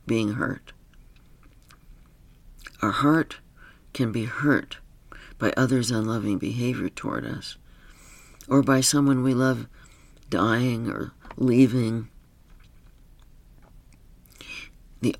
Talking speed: 85 wpm